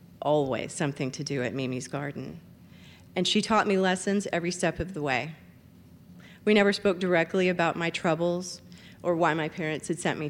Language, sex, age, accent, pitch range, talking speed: English, female, 40-59, American, 150-185 Hz, 180 wpm